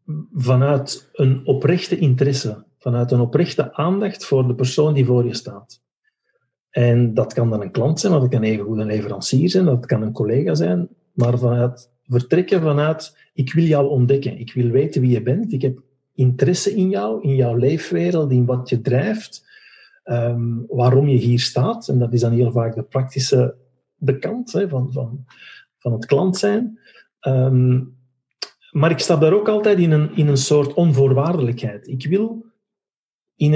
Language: Dutch